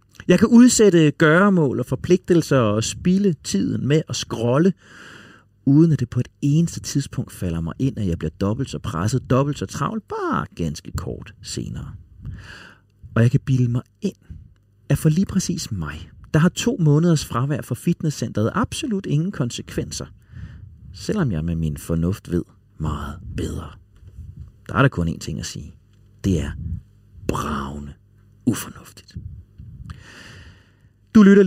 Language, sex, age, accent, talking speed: Danish, male, 40-59, native, 150 wpm